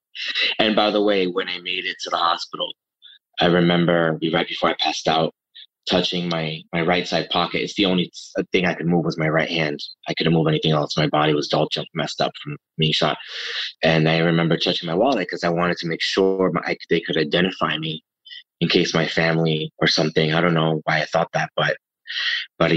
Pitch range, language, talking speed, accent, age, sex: 80-90 Hz, English, 220 wpm, American, 20-39, male